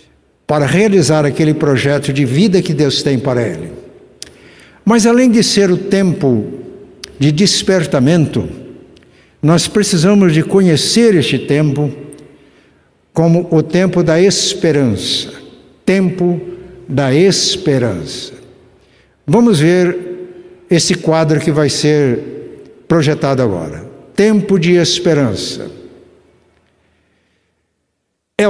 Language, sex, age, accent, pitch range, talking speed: Portuguese, male, 60-79, Brazilian, 145-195 Hz, 95 wpm